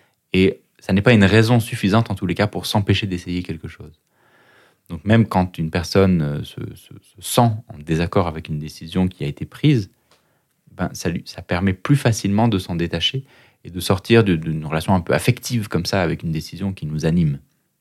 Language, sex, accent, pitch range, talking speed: French, male, French, 80-105 Hz, 200 wpm